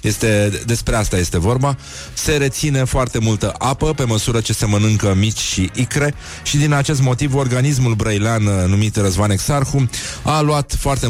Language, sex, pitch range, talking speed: Romanian, male, 100-130 Hz, 160 wpm